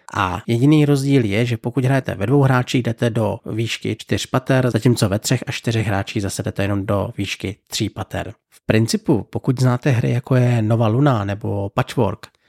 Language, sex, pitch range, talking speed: Czech, male, 110-130 Hz, 185 wpm